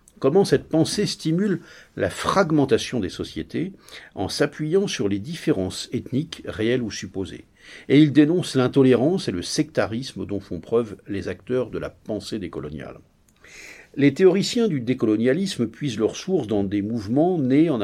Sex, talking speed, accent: male, 150 wpm, French